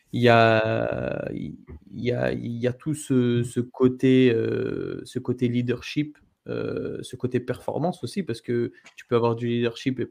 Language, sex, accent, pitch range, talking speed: French, male, French, 115-130 Hz, 165 wpm